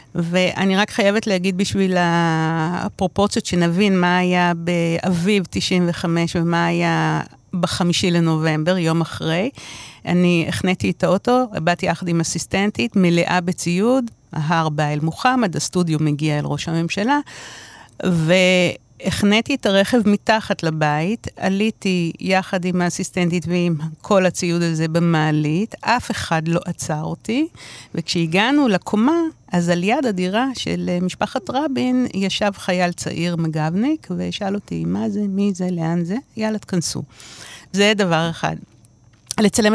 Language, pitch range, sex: Hebrew, 170-205 Hz, female